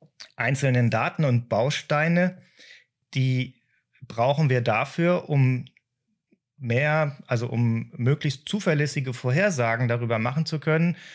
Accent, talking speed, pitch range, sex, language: German, 100 wpm, 120-150 Hz, male, English